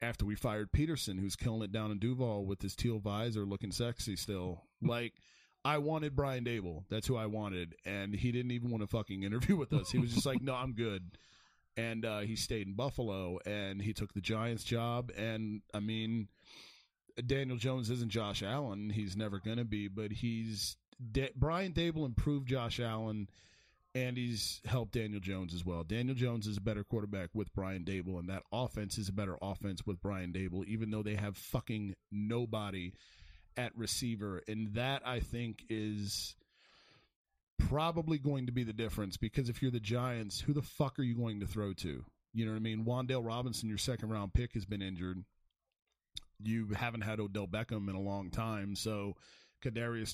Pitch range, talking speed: 100-120 Hz, 190 wpm